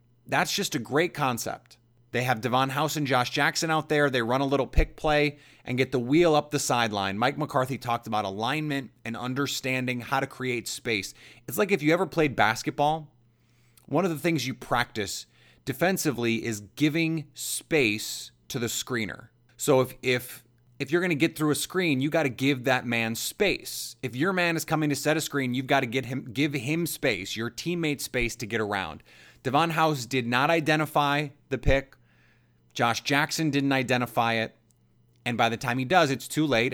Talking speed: 195 wpm